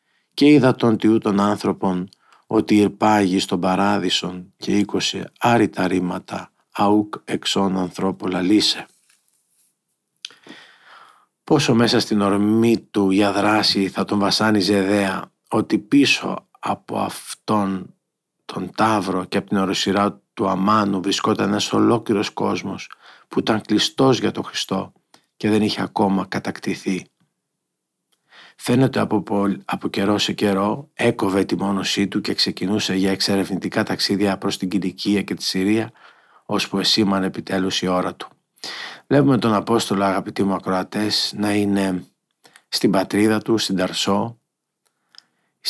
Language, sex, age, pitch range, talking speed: Greek, male, 50-69, 95-110 Hz, 125 wpm